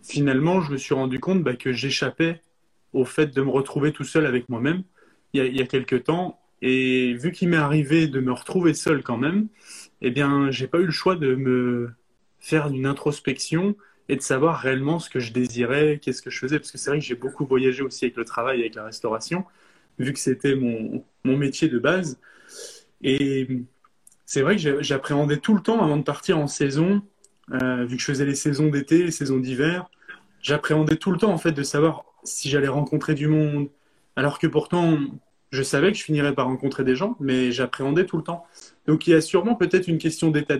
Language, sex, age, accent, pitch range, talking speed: French, male, 20-39, French, 135-165 Hz, 215 wpm